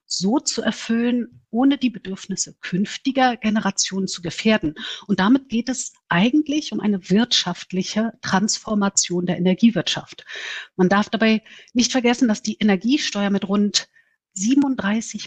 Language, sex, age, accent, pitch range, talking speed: German, female, 50-69, German, 180-235 Hz, 125 wpm